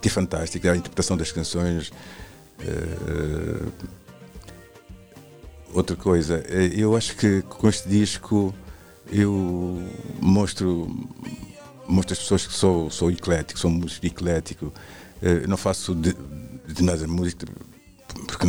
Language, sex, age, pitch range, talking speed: Portuguese, male, 50-69, 85-95 Hz, 120 wpm